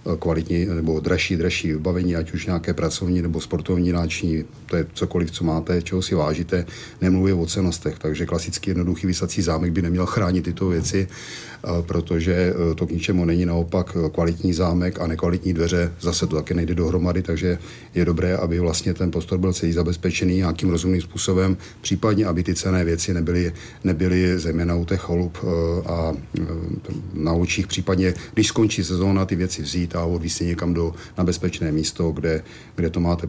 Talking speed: 170 wpm